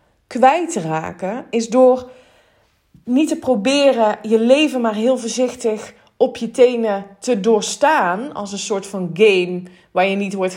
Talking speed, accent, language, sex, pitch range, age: 155 wpm, Dutch, Dutch, female, 200-245 Hz, 20-39